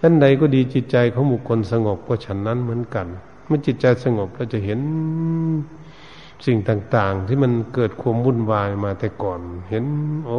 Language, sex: Thai, male